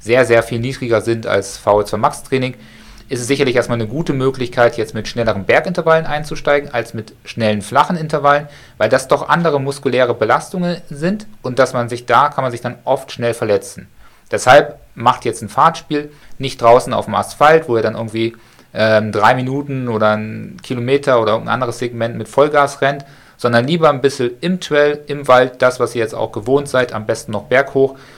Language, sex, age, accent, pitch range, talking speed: German, male, 40-59, German, 110-135 Hz, 190 wpm